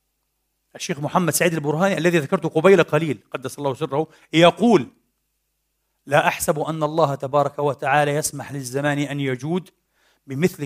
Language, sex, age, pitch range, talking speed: Arabic, male, 40-59, 145-185 Hz, 130 wpm